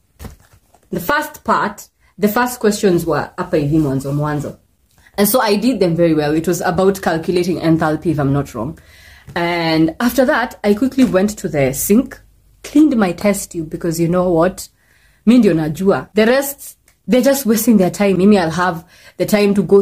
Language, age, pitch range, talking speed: English, 20-39, 170-255 Hz, 165 wpm